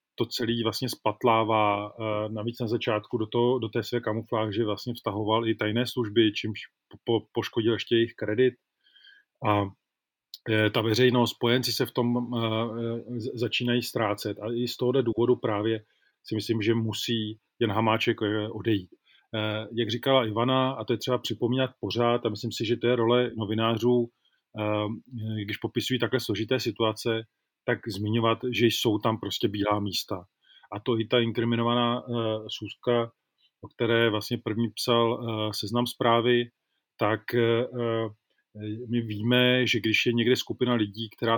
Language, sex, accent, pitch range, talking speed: Czech, male, native, 110-120 Hz, 150 wpm